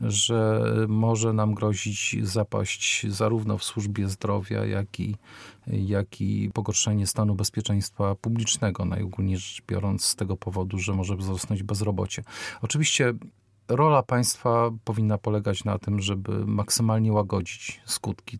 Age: 40-59